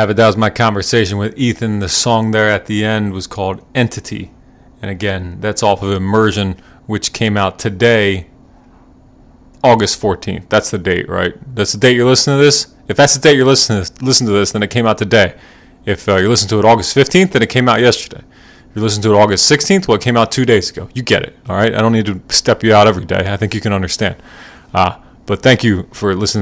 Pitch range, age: 100-120 Hz, 30-49